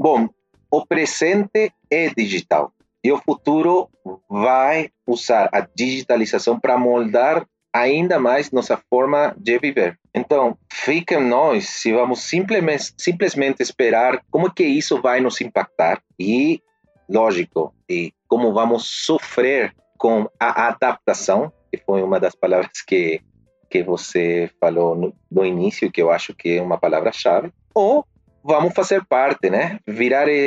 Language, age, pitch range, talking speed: Portuguese, 40-59, 120-180 Hz, 135 wpm